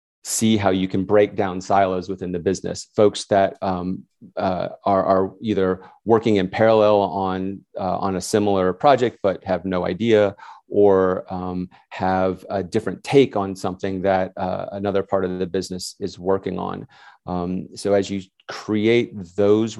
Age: 30-49